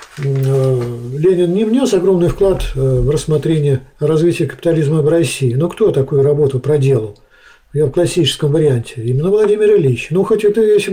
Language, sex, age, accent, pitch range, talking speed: Russian, male, 50-69, native, 140-190 Hz, 150 wpm